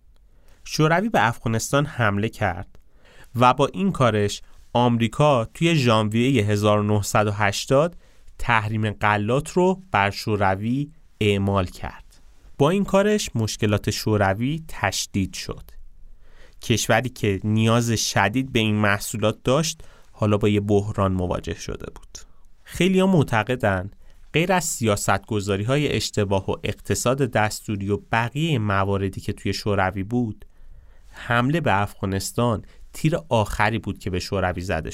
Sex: male